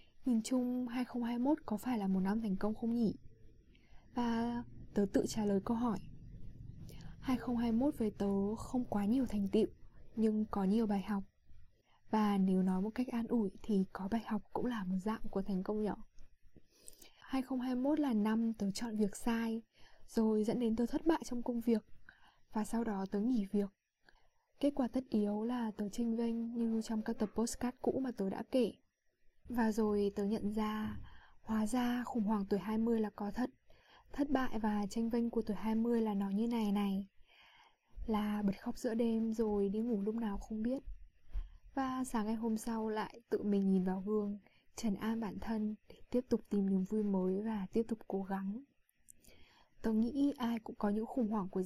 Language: Vietnamese